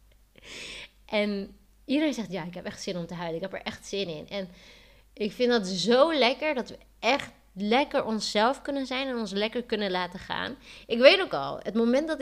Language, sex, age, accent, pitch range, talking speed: Dutch, female, 20-39, Dutch, 190-245 Hz, 210 wpm